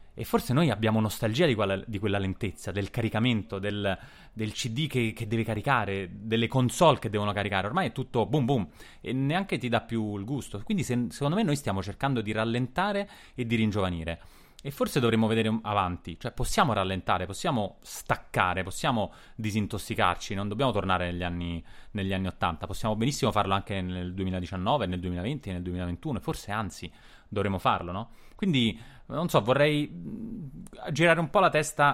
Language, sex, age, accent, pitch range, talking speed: Italian, male, 20-39, native, 95-135 Hz, 170 wpm